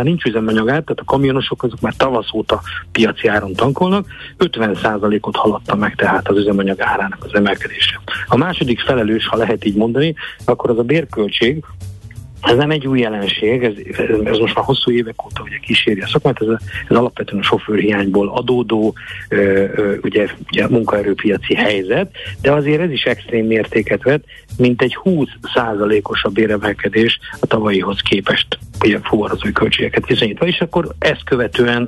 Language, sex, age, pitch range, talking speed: Hungarian, male, 50-69, 105-130 Hz, 160 wpm